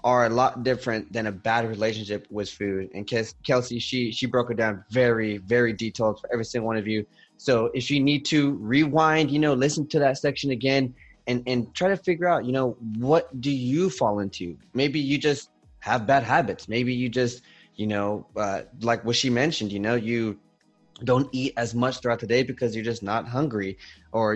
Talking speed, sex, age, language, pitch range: 205 wpm, male, 20-39, English, 110-130 Hz